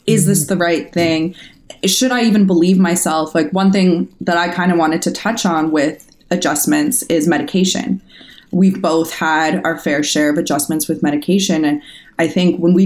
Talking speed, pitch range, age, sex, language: 185 wpm, 165-200 Hz, 20-39, female, English